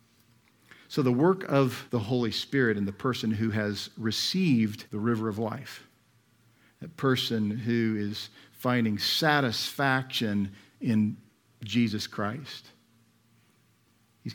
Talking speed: 115 wpm